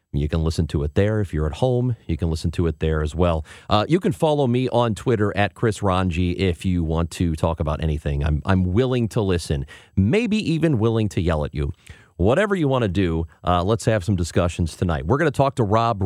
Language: English